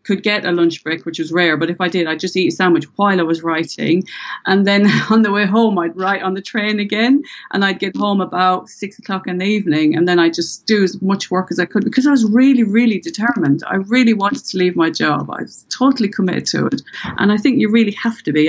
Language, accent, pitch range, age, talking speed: English, British, 175-220 Hz, 40-59, 265 wpm